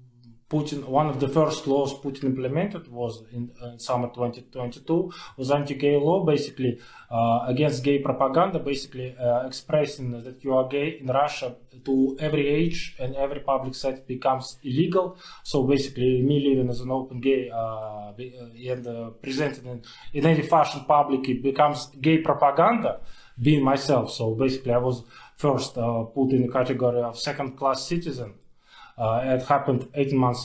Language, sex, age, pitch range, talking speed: English, male, 20-39, 120-150 Hz, 160 wpm